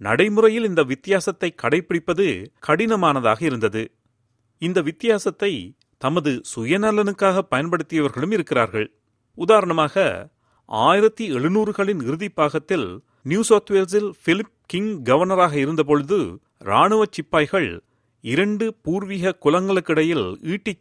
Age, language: 40-59, Tamil